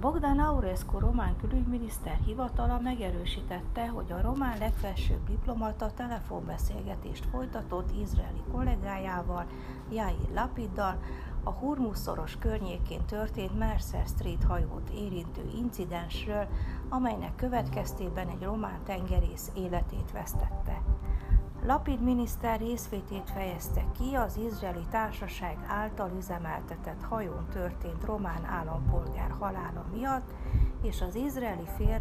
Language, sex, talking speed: Hungarian, female, 100 wpm